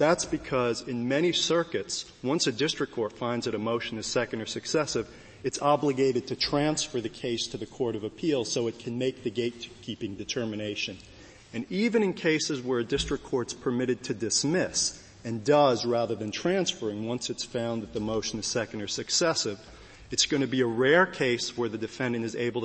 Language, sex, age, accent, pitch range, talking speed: English, male, 40-59, American, 115-135 Hz, 195 wpm